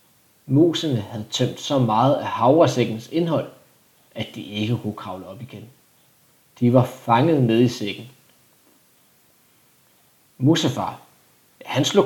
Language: Danish